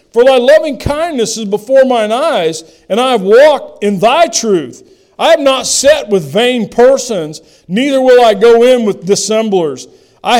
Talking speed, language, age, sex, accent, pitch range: 175 wpm, English, 50-69, male, American, 215-310 Hz